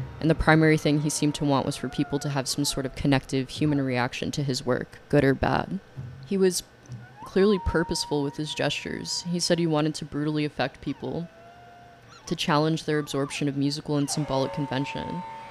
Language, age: English, 10-29